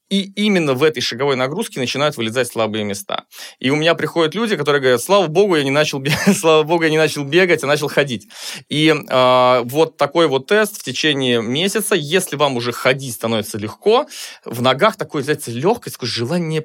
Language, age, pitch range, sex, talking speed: Russian, 20-39, 120-185 Hz, male, 195 wpm